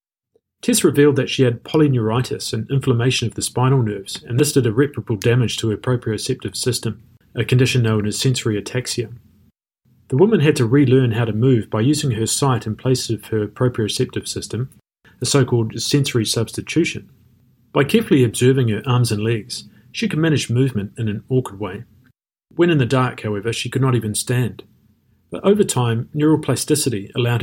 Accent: Australian